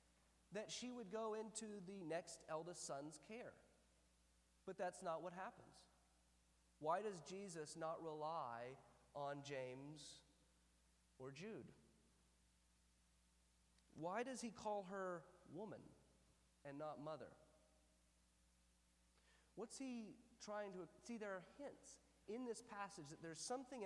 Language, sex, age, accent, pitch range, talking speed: English, male, 40-59, American, 150-205 Hz, 120 wpm